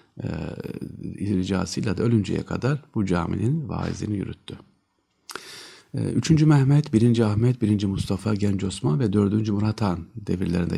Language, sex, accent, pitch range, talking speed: Turkish, male, native, 95-135 Hz, 125 wpm